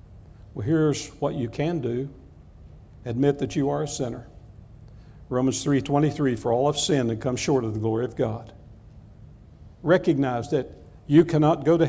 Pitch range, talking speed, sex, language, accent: 120-160 Hz, 165 wpm, male, English, American